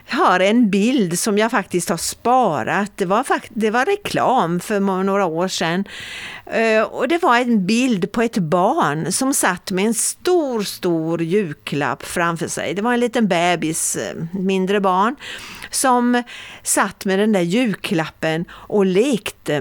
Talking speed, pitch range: 155 wpm, 175-240 Hz